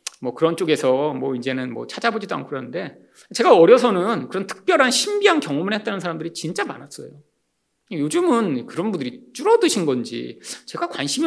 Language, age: Korean, 40-59